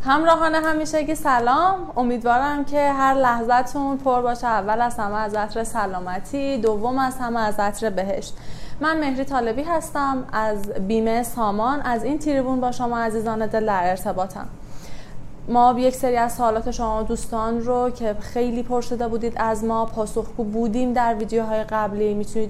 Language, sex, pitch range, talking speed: Persian, female, 220-275 Hz, 150 wpm